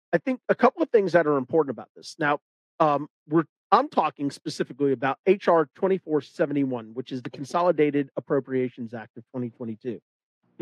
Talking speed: 160 wpm